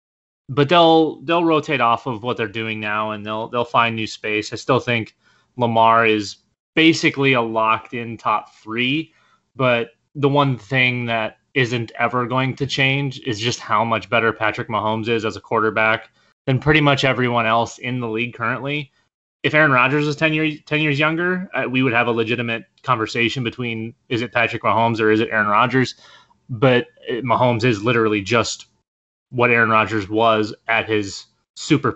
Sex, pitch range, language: male, 115-140 Hz, English